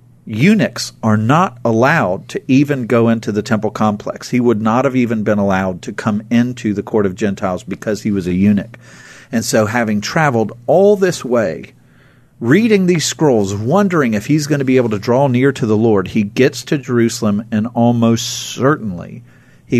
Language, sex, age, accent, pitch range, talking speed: English, male, 50-69, American, 105-125 Hz, 185 wpm